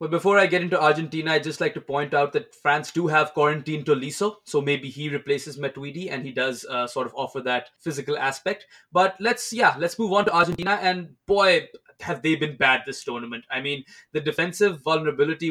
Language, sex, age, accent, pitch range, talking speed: English, male, 20-39, Indian, 135-180 Hz, 210 wpm